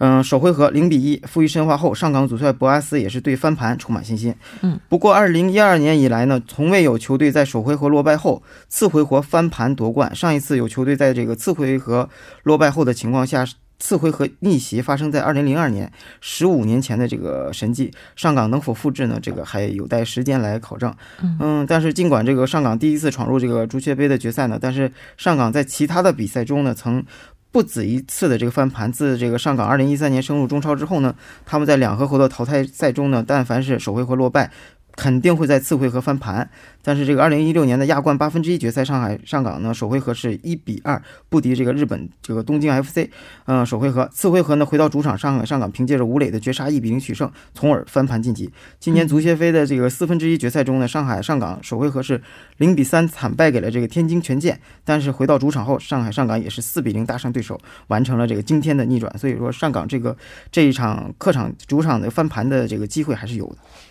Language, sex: Korean, male